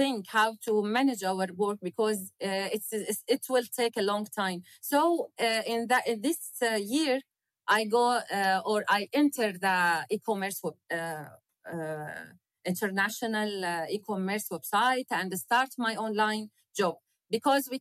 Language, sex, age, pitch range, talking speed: English, female, 30-49, 205-260 Hz, 155 wpm